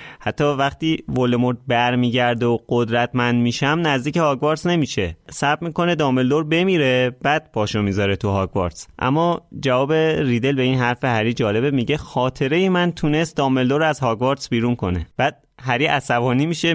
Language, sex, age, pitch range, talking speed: Persian, male, 30-49, 120-155 Hz, 145 wpm